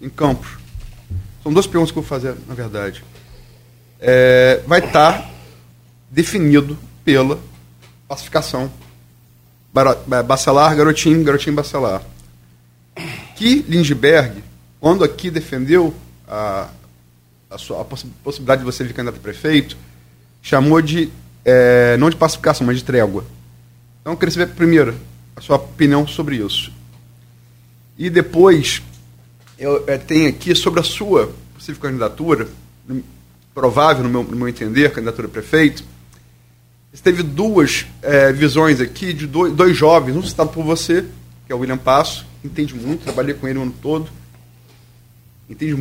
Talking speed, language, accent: 135 wpm, Portuguese, Brazilian